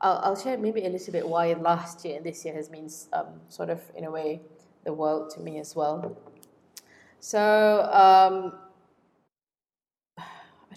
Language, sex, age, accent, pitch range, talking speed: English, female, 20-39, Malaysian, 165-200 Hz, 165 wpm